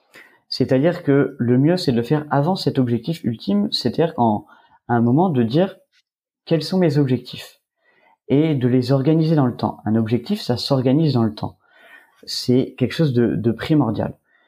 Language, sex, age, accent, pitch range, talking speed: French, male, 30-49, French, 115-145 Hz, 180 wpm